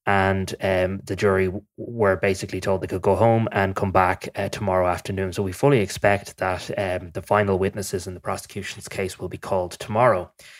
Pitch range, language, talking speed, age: 95-110 Hz, English, 200 wpm, 20-39